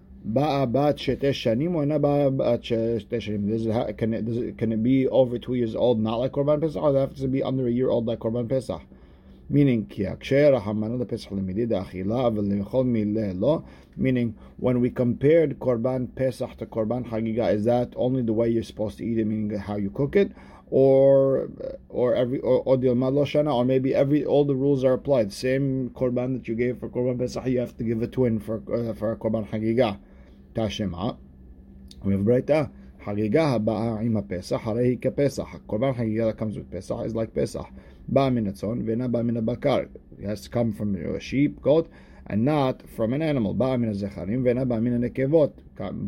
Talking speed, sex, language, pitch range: 160 wpm, male, English, 105-130 Hz